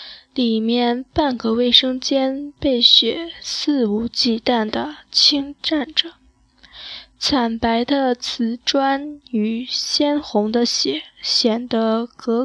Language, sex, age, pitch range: Chinese, female, 10-29, 225-260 Hz